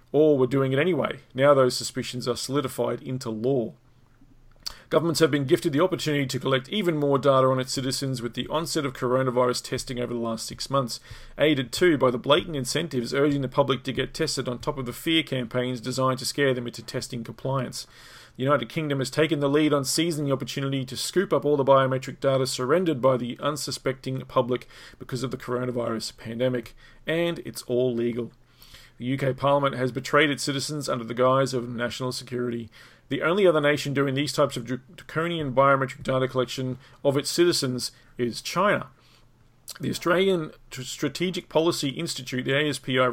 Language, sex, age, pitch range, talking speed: English, male, 30-49, 125-145 Hz, 180 wpm